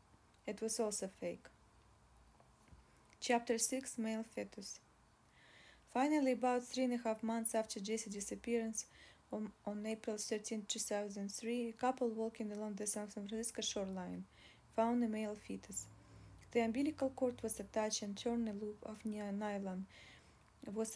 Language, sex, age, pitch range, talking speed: English, female, 20-39, 210-235 Hz, 130 wpm